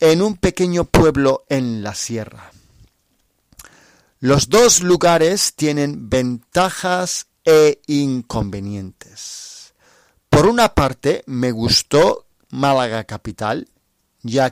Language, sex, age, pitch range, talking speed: Spanish, male, 40-59, 110-160 Hz, 90 wpm